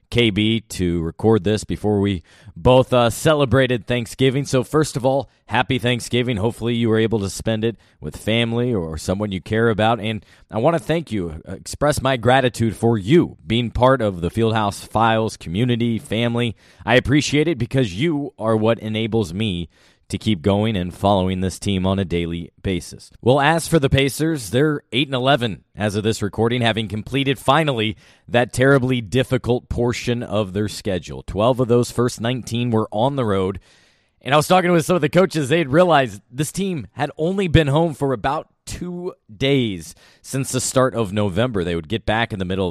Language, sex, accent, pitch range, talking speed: English, male, American, 105-135 Hz, 190 wpm